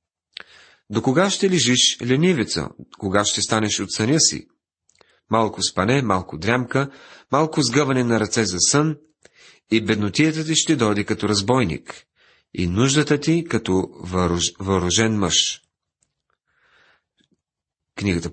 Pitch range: 105-145 Hz